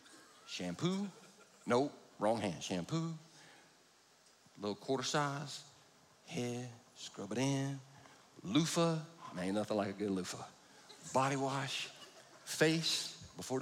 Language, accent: English, American